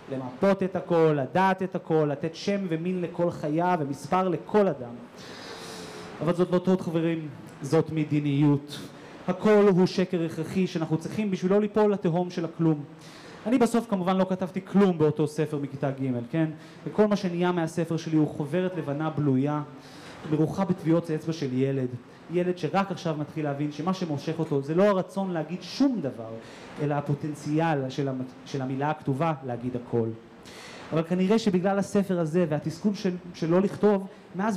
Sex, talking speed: male, 155 wpm